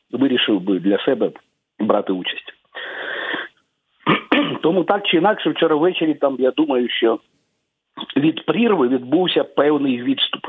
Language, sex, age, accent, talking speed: Ukrainian, male, 50-69, native, 120 wpm